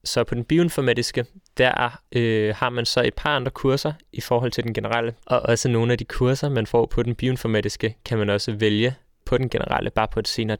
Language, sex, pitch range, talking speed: Danish, male, 110-125 Hz, 225 wpm